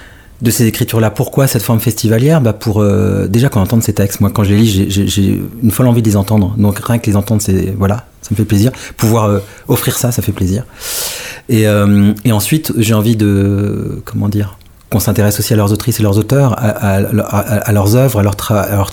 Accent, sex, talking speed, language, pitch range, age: French, male, 240 wpm, French, 105-120 Hz, 40-59